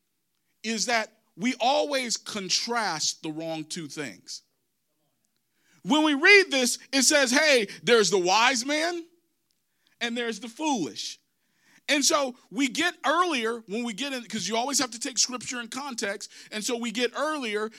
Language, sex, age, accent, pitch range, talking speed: English, male, 40-59, American, 195-280 Hz, 160 wpm